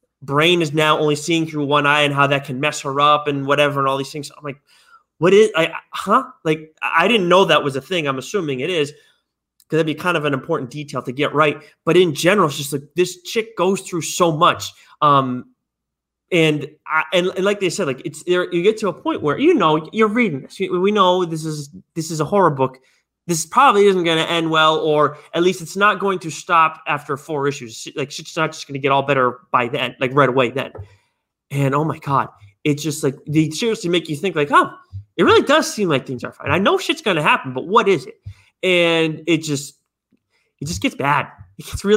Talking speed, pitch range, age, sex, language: 240 wpm, 145-185 Hz, 20-39, male, English